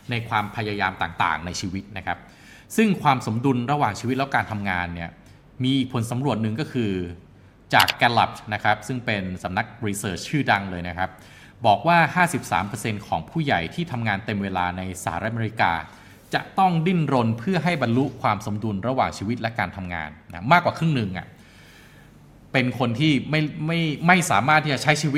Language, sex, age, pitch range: Thai, male, 20-39, 95-135 Hz